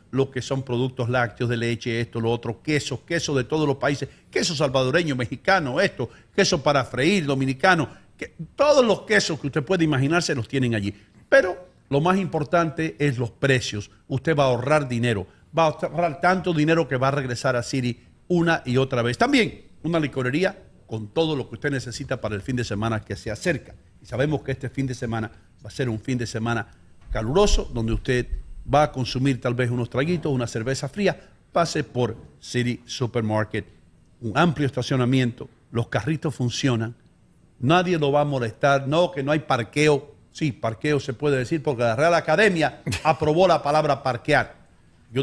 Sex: male